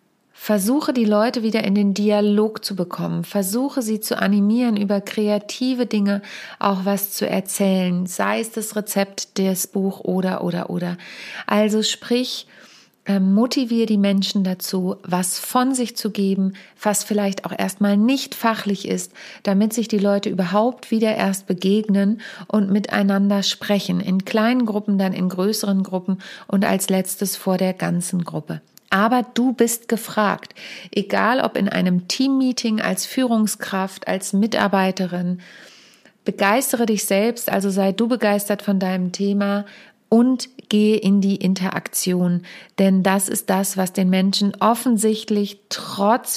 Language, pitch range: German, 190-220 Hz